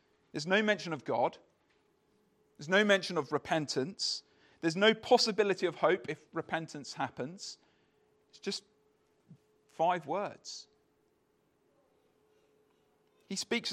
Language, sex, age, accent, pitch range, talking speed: English, male, 40-59, British, 140-190 Hz, 105 wpm